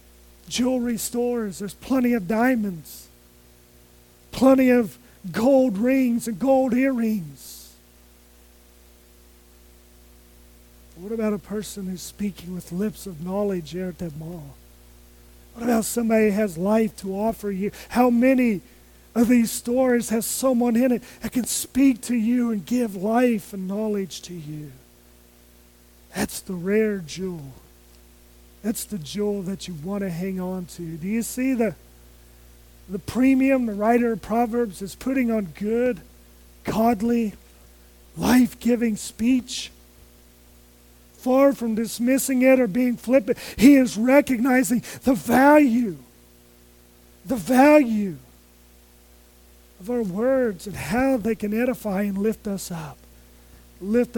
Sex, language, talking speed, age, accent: male, English, 125 wpm, 40-59, American